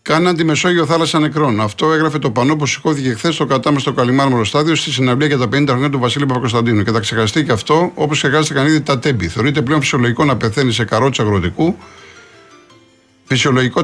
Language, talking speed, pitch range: Greek, 190 wpm, 125-155 Hz